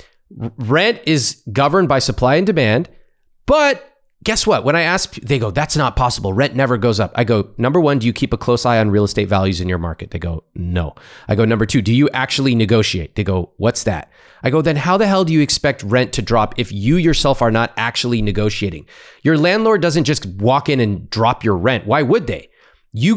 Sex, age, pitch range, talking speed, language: male, 30-49, 105-150 Hz, 225 wpm, English